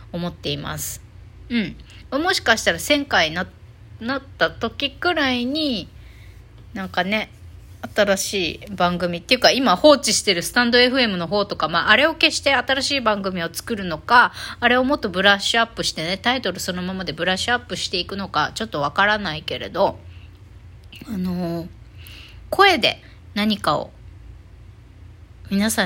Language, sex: Japanese, female